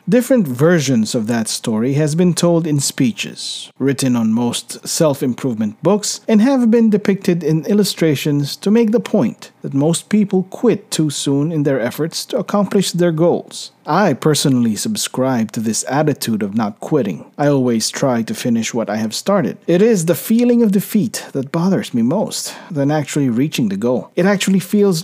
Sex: male